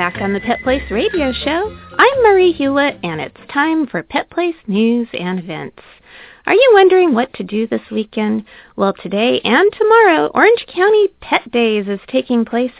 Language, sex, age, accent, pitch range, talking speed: English, female, 30-49, American, 210-330 Hz, 180 wpm